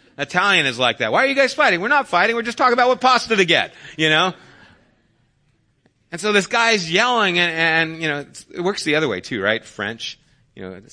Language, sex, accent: English, male, American